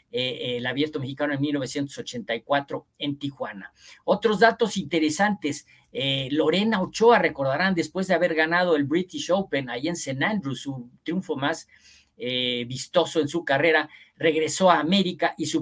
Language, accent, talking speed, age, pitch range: Spanish, Mexican, 155 wpm, 50-69, 145-185 Hz